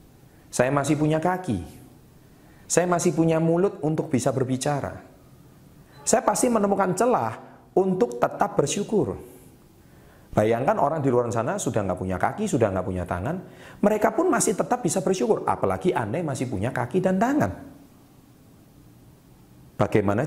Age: 40-59